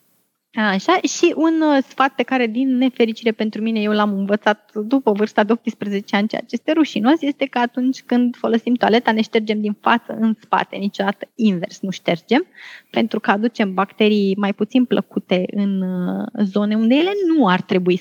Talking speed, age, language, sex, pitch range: 175 wpm, 20-39, Romanian, female, 215-275 Hz